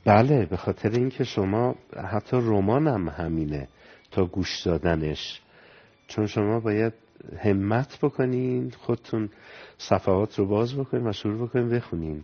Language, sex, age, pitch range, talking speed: Persian, male, 50-69, 90-120 Hz, 125 wpm